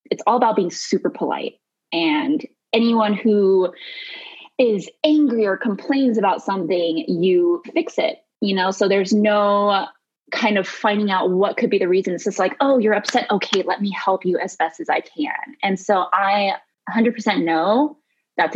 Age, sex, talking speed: 20-39, female, 180 wpm